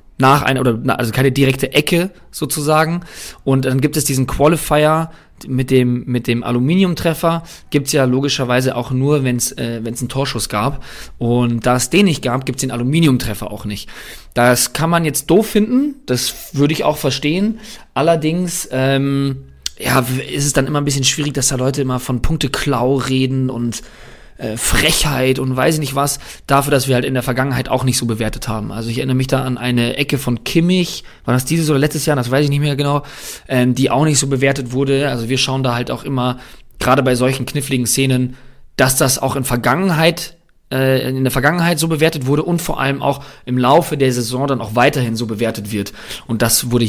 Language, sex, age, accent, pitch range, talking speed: German, male, 20-39, German, 125-150 Hz, 205 wpm